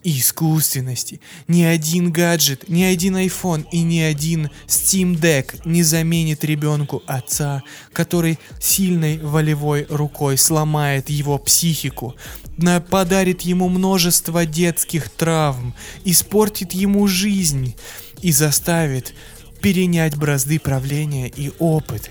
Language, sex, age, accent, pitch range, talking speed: Russian, male, 20-39, native, 140-170 Hz, 105 wpm